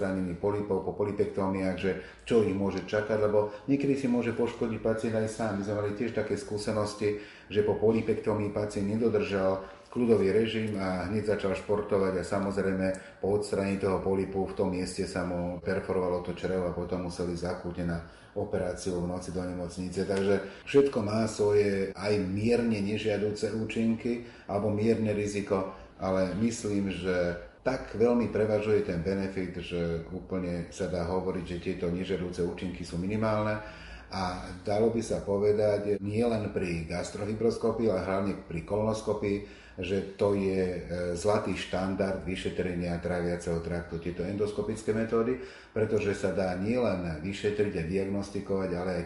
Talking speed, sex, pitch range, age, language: 145 wpm, male, 90-105 Hz, 30-49, Slovak